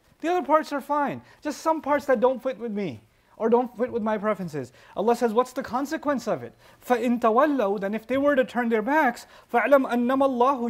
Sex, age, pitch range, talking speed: male, 30-49, 185-240 Hz, 200 wpm